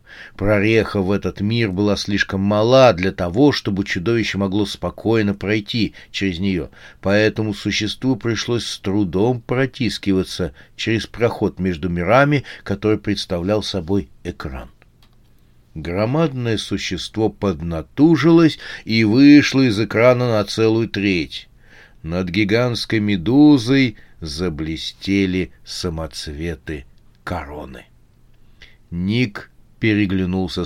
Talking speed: 95 wpm